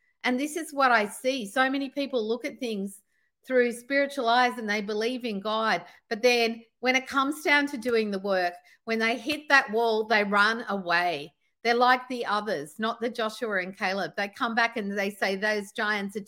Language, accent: English, Australian